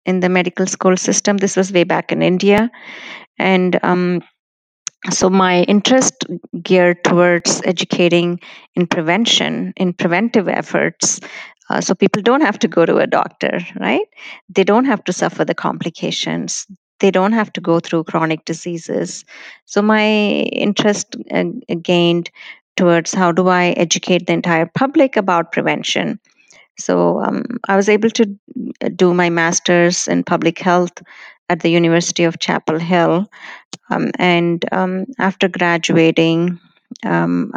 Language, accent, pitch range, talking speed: English, Indian, 175-205 Hz, 140 wpm